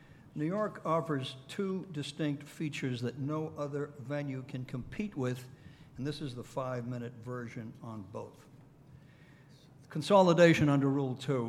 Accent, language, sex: American, English, male